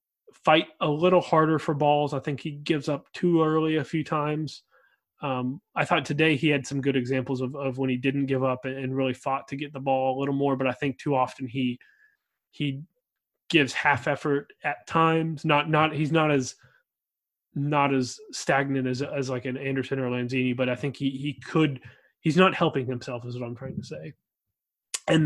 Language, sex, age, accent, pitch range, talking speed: English, male, 20-39, American, 135-155 Hz, 205 wpm